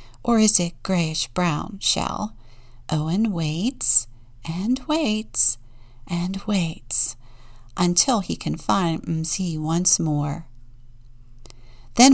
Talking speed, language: 95 wpm, English